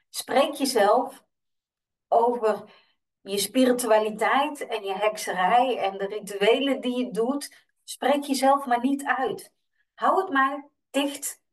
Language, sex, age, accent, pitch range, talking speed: Dutch, female, 50-69, Dutch, 215-270 Hz, 120 wpm